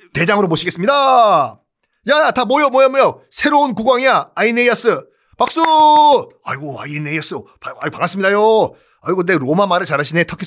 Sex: male